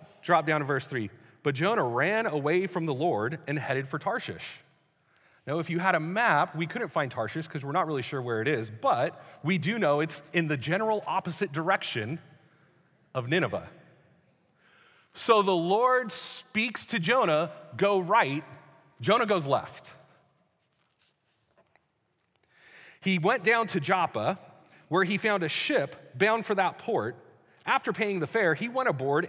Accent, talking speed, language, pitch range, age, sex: American, 160 wpm, English, 150-195 Hz, 40-59, male